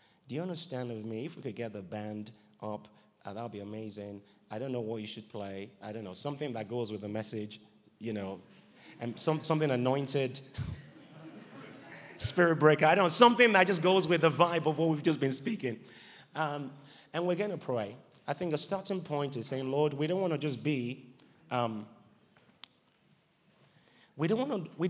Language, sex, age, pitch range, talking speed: English, male, 30-49, 120-170 Hz, 190 wpm